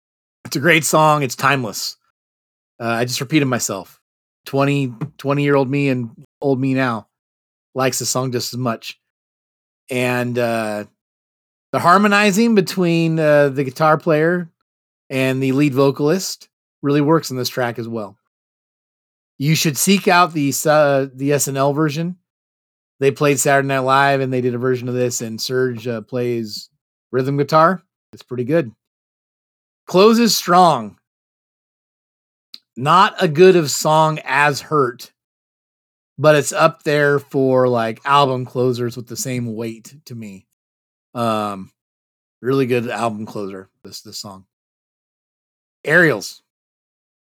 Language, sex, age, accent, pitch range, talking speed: English, male, 30-49, American, 115-150 Hz, 130 wpm